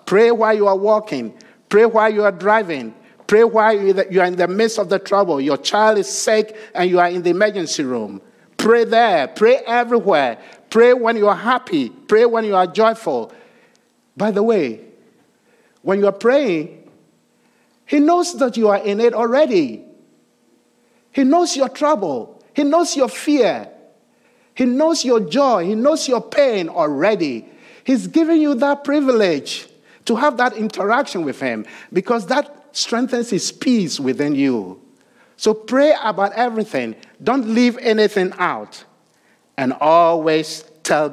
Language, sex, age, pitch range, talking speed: English, male, 50-69, 160-245 Hz, 155 wpm